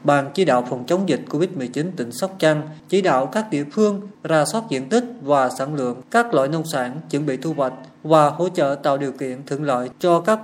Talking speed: 230 wpm